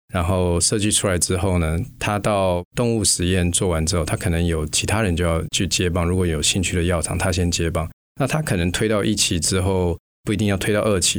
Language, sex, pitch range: Chinese, male, 85-100 Hz